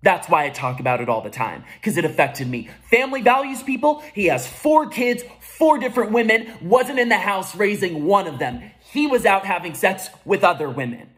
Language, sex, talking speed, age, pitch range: English, male, 210 wpm, 20-39, 155-235 Hz